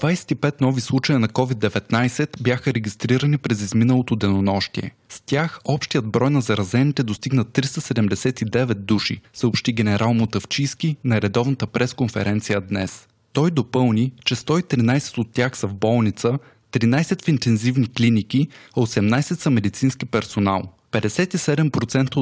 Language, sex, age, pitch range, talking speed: Bulgarian, male, 20-39, 110-140 Hz, 120 wpm